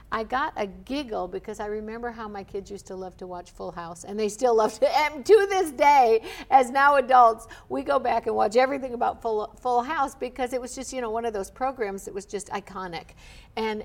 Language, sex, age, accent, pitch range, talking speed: English, female, 60-79, American, 200-270 Hz, 230 wpm